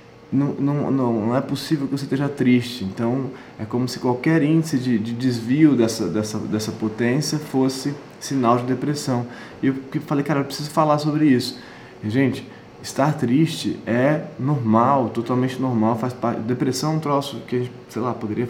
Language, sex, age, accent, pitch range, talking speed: Portuguese, male, 20-39, Brazilian, 110-130 Hz, 170 wpm